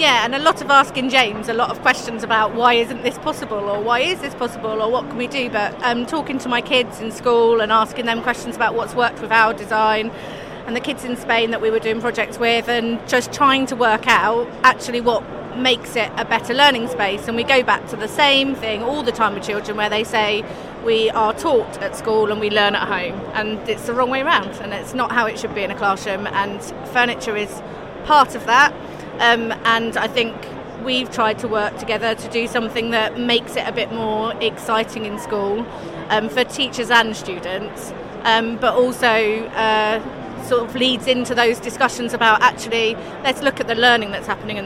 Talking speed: 220 wpm